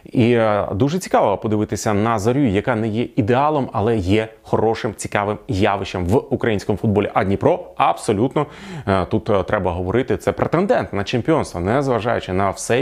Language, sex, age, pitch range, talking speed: Ukrainian, male, 30-49, 105-135 Hz, 150 wpm